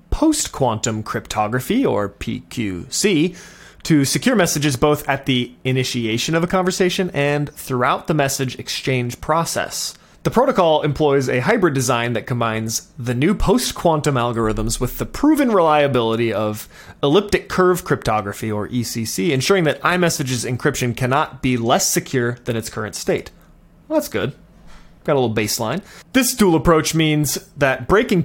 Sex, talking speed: male, 140 wpm